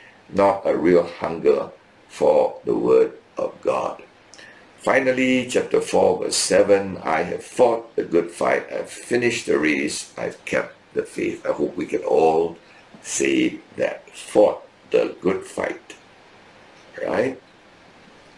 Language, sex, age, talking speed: English, male, 60-79, 130 wpm